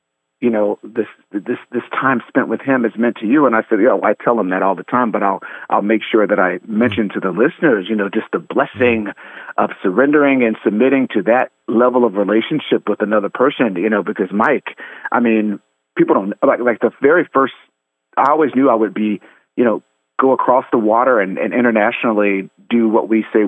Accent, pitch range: American, 100-125 Hz